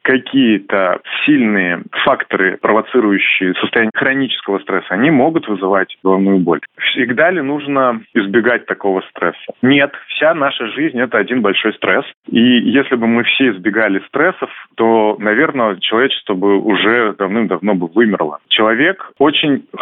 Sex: male